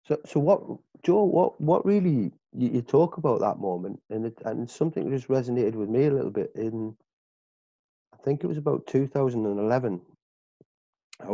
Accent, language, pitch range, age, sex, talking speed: British, English, 105-130 Hz, 30-49, male, 165 wpm